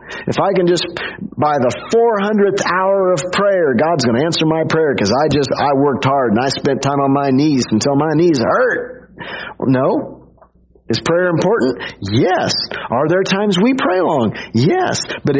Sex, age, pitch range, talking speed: male, 40-59, 140-190 Hz, 180 wpm